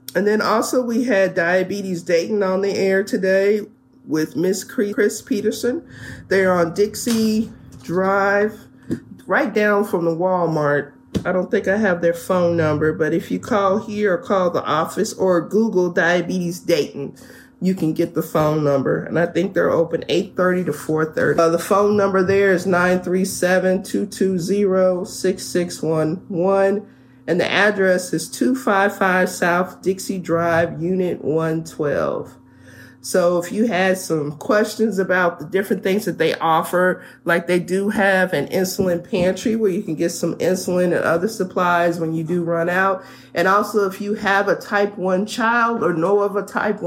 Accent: American